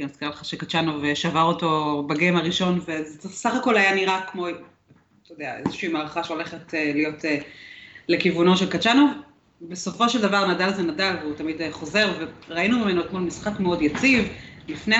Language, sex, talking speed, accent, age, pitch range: Hebrew, female, 165 wpm, native, 30-49, 155-200 Hz